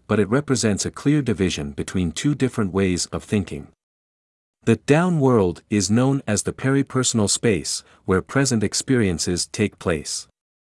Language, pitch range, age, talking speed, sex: English, 90-120 Hz, 50-69, 145 wpm, male